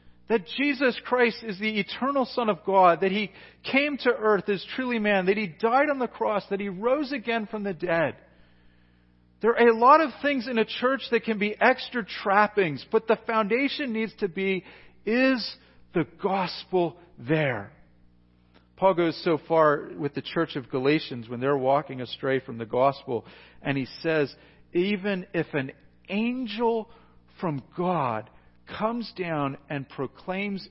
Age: 40-59